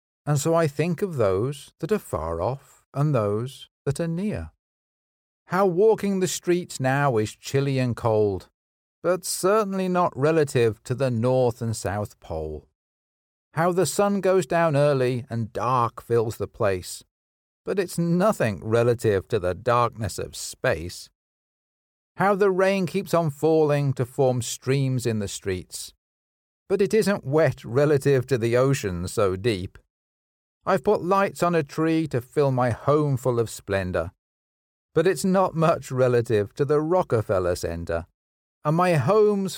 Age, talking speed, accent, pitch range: 50-69, 155 wpm, British, 100-165 Hz